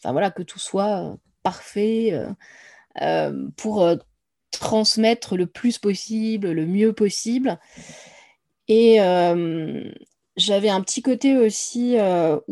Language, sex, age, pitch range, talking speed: French, female, 20-39, 175-220 Hz, 115 wpm